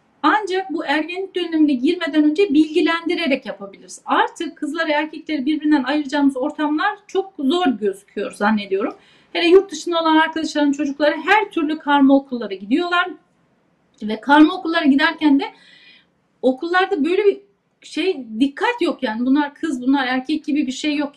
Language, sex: Turkish, female